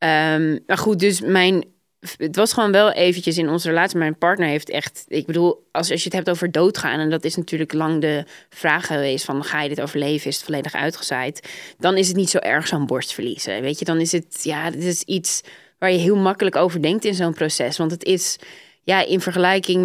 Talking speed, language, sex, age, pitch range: 230 wpm, Dutch, female, 20-39, 155-195 Hz